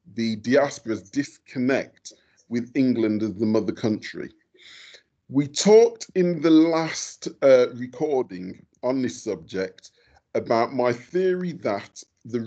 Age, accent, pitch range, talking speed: 40-59, British, 105-135 Hz, 115 wpm